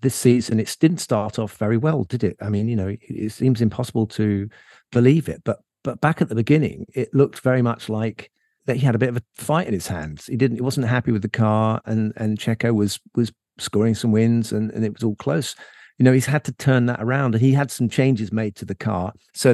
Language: English